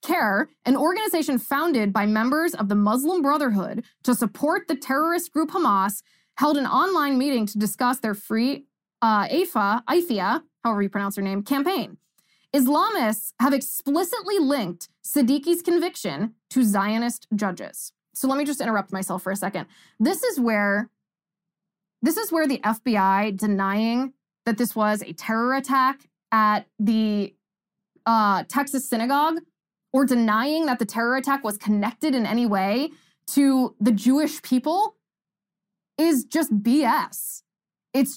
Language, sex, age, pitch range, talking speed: English, female, 20-39, 210-295 Hz, 140 wpm